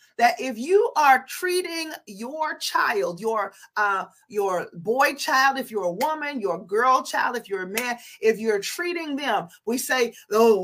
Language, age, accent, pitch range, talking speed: English, 40-59, American, 195-275 Hz, 170 wpm